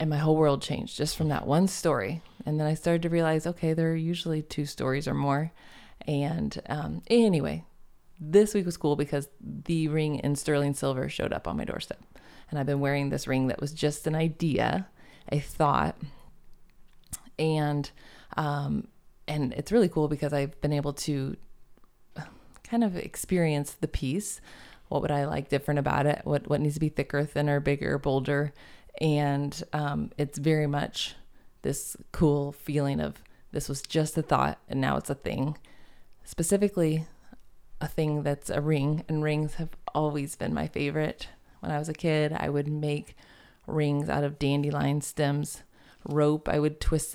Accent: American